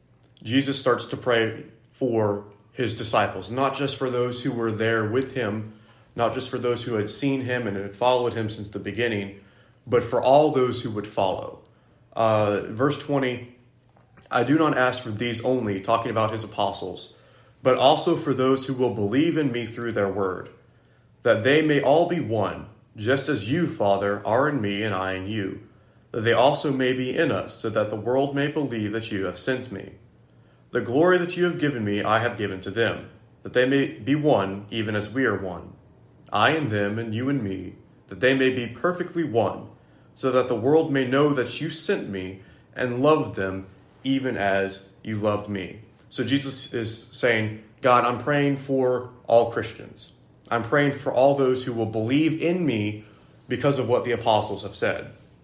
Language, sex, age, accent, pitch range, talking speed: English, male, 30-49, American, 105-135 Hz, 195 wpm